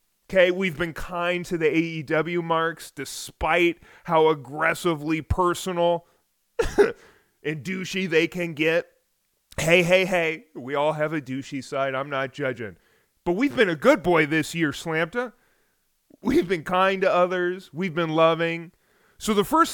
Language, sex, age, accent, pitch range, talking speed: English, male, 30-49, American, 175-255 Hz, 145 wpm